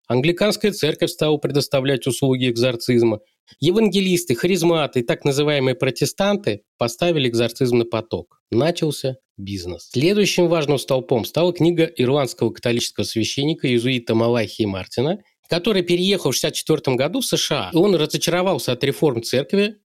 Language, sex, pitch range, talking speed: Russian, male, 120-170 Hz, 125 wpm